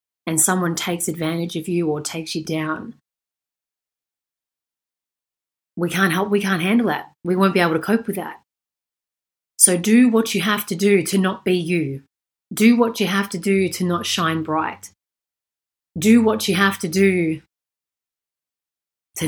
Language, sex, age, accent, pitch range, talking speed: English, female, 30-49, Australian, 160-200 Hz, 165 wpm